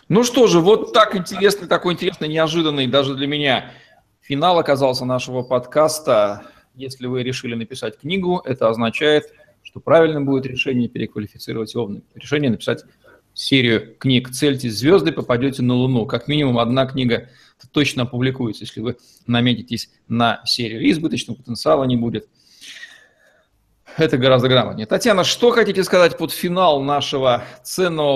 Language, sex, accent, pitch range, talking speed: Russian, male, native, 120-150 Hz, 135 wpm